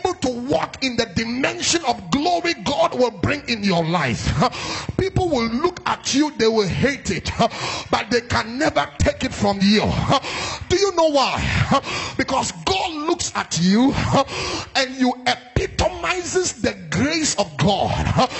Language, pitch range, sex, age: English, 225-325 Hz, male, 30-49